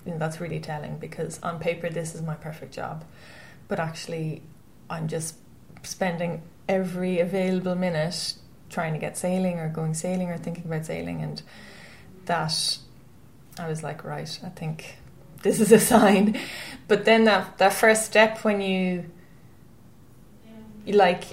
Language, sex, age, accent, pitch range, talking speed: English, female, 20-39, Irish, 165-185 Hz, 145 wpm